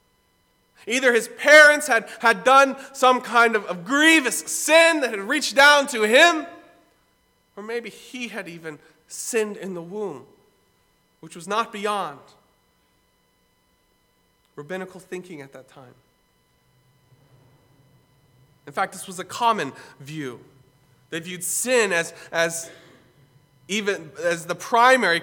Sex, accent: male, American